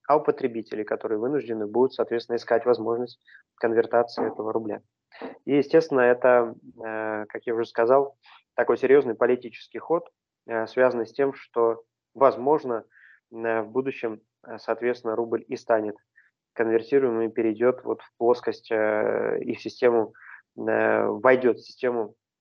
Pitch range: 115-125 Hz